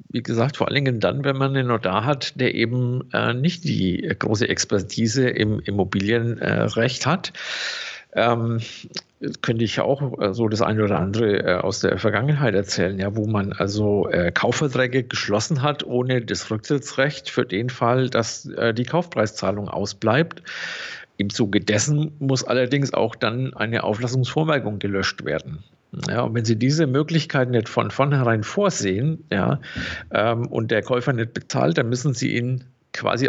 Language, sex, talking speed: German, male, 160 wpm